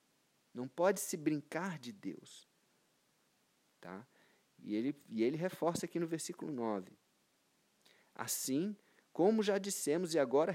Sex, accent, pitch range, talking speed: male, Brazilian, 105-145 Hz, 115 wpm